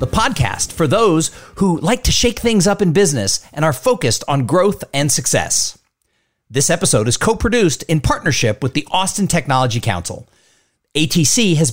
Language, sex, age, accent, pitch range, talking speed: English, male, 50-69, American, 135-195 Hz, 165 wpm